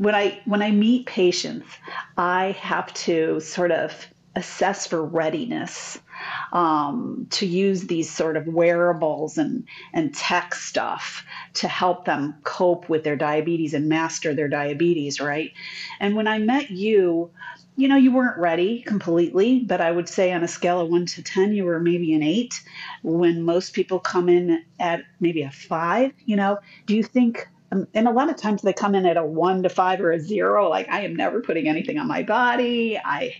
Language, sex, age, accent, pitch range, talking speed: English, female, 40-59, American, 170-225 Hz, 185 wpm